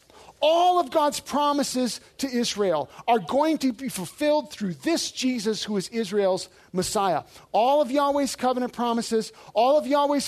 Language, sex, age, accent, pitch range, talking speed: English, male, 40-59, American, 210-285 Hz, 150 wpm